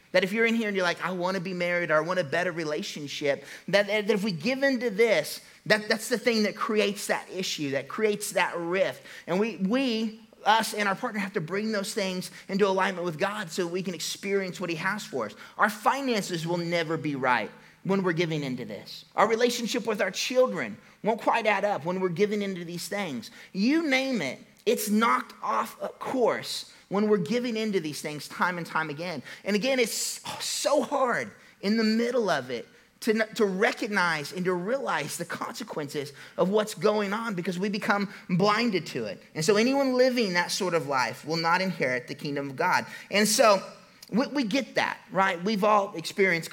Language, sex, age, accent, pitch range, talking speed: English, male, 30-49, American, 175-225 Hz, 210 wpm